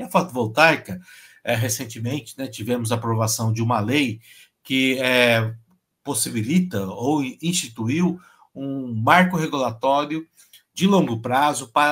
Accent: Brazilian